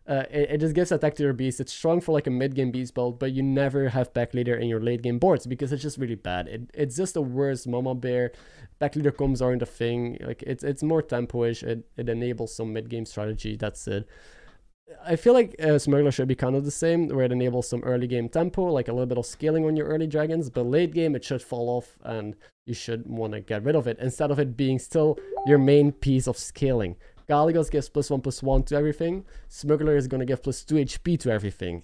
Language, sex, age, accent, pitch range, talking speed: English, male, 20-39, Norwegian, 120-150 Hz, 240 wpm